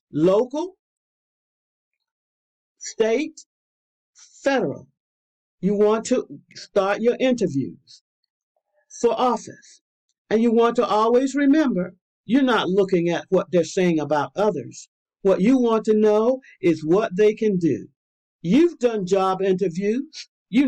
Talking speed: 120 wpm